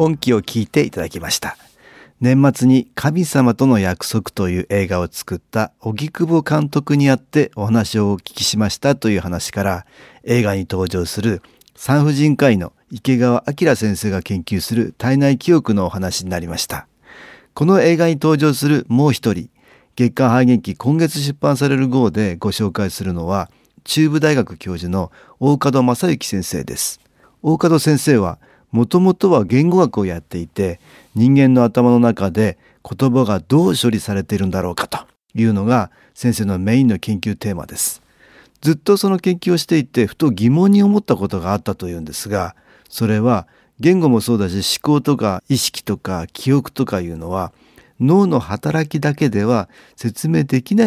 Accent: native